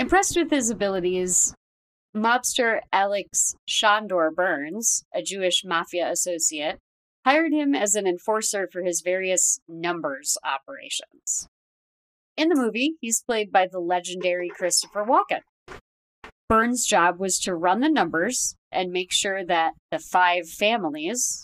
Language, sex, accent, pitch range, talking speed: English, female, American, 175-235 Hz, 130 wpm